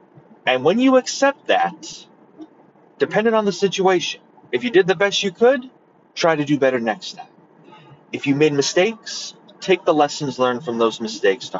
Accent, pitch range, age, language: American, 125-190 Hz, 30-49, English